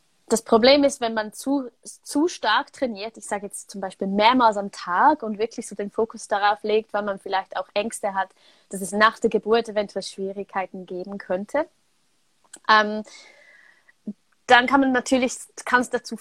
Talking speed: 165 wpm